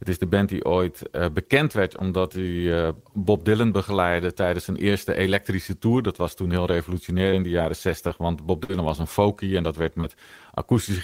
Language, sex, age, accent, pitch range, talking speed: Dutch, male, 40-59, Dutch, 90-105 Hz, 205 wpm